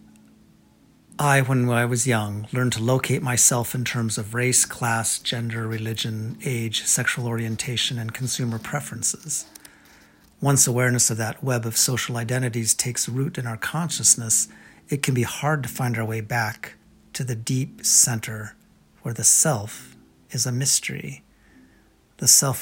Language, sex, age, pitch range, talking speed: English, male, 40-59, 115-130 Hz, 150 wpm